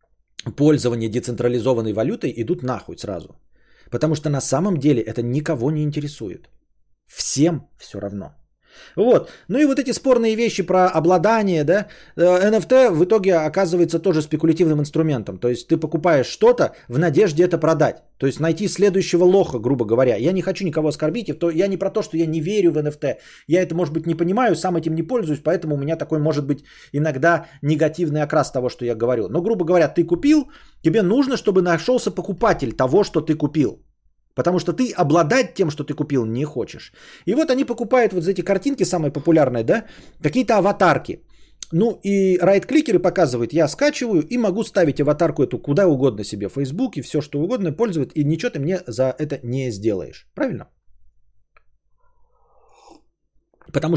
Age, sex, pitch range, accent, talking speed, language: 20-39, male, 145-195 Hz, native, 175 wpm, Russian